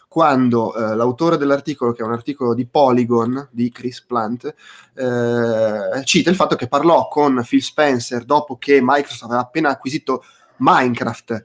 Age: 20-39